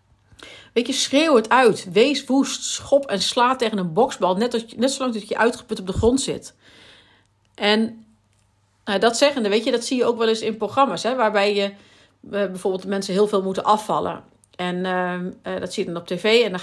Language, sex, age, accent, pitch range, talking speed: Dutch, female, 40-59, Dutch, 180-225 Hz, 210 wpm